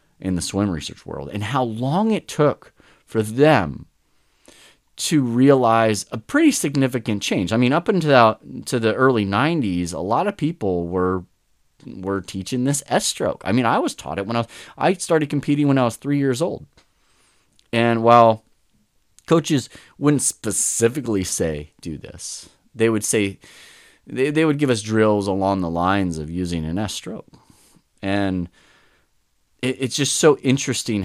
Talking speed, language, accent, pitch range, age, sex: 160 wpm, English, American, 85-130 Hz, 30-49, male